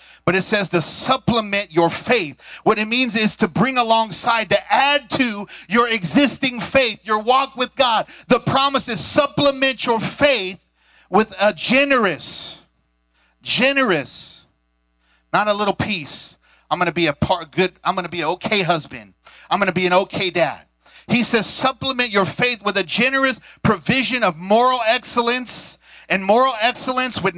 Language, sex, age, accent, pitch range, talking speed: English, male, 50-69, American, 175-235 Hz, 165 wpm